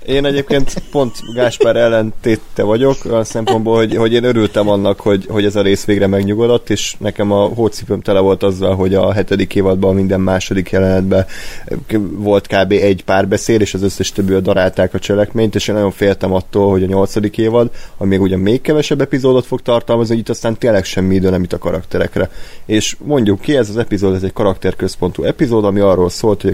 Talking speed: 190 wpm